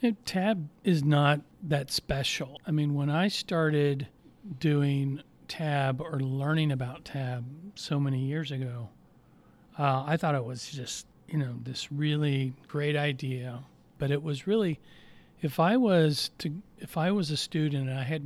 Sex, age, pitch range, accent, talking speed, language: male, 40-59, 130-155 Hz, American, 165 wpm, English